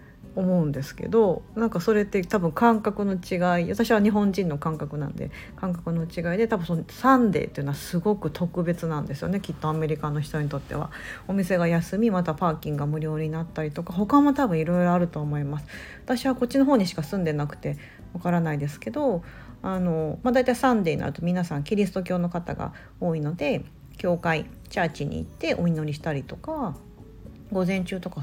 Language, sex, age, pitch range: Japanese, female, 40-59, 155-225 Hz